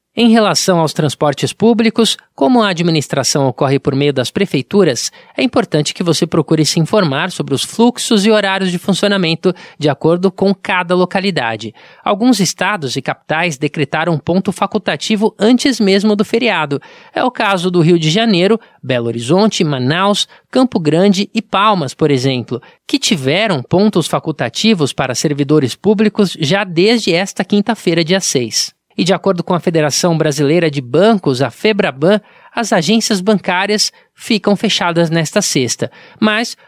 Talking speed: 150 wpm